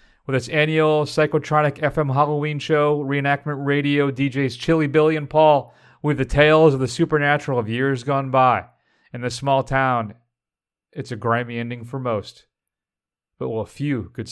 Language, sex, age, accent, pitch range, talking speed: English, male, 30-49, American, 125-150 Hz, 165 wpm